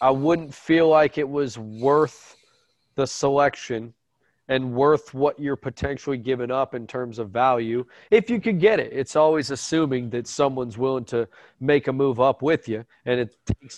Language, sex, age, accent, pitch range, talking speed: English, male, 30-49, American, 125-155 Hz, 180 wpm